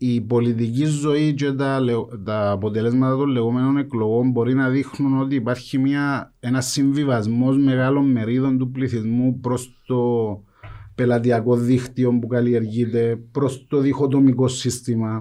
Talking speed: 125 wpm